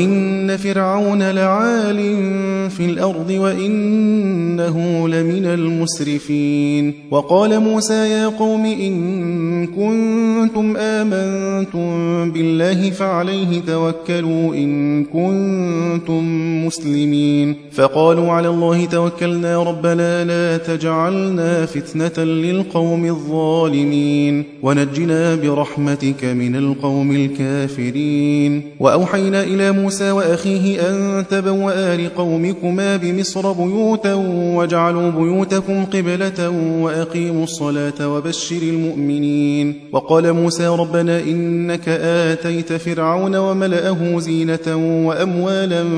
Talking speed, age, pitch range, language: 60 wpm, 30-49, 155-190 Hz, Arabic